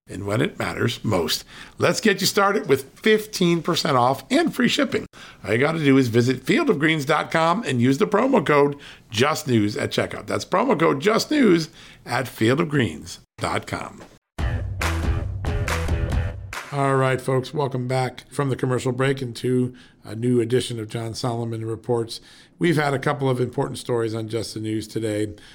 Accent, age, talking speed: American, 50-69, 155 wpm